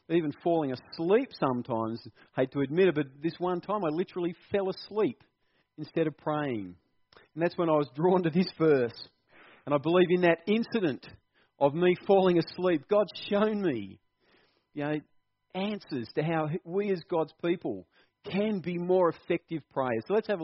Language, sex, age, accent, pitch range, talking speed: English, male, 40-59, Australian, 145-190 Hz, 170 wpm